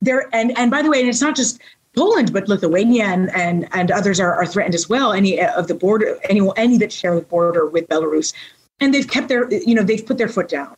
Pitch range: 190-255 Hz